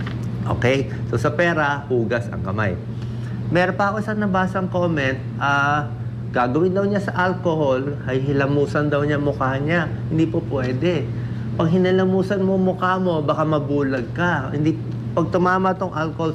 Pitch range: 120-155 Hz